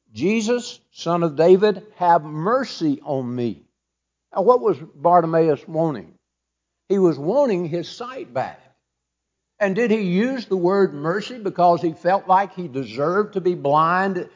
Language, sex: English, male